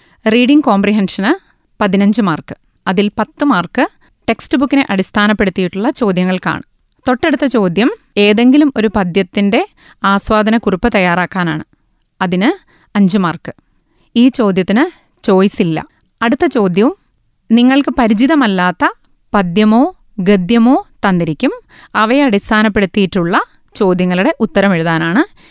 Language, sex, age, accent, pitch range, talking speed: Malayalam, female, 30-49, native, 190-255 Hz, 85 wpm